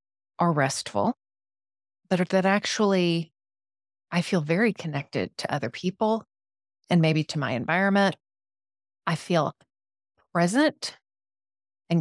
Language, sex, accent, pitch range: English, female, American, 130-205 Hz